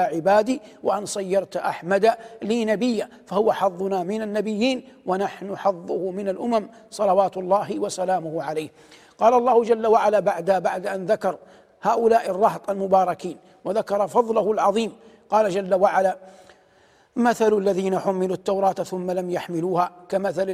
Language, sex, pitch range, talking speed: Arabic, male, 185-225 Hz, 125 wpm